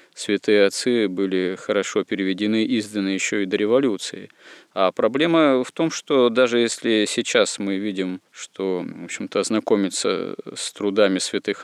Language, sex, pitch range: Russian, male, 95-110 Hz